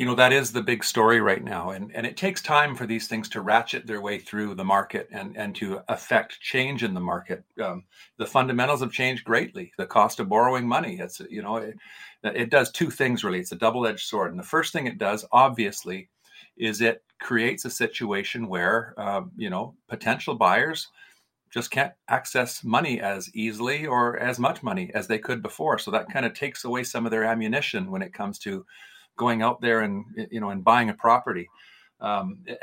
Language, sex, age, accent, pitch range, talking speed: English, male, 50-69, American, 105-130 Hz, 210 wpm